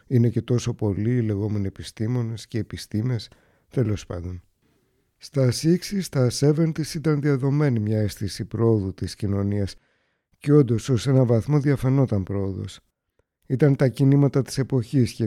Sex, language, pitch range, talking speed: male, Greek, 105-135 Hz, 140 wpm